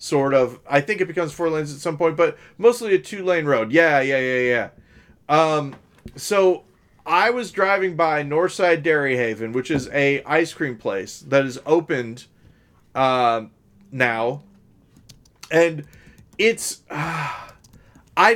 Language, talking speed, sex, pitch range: English, 145 wpm, male, 125-180 Hz